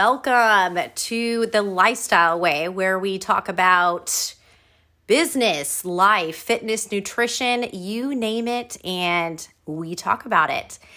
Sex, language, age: female, English, 30-49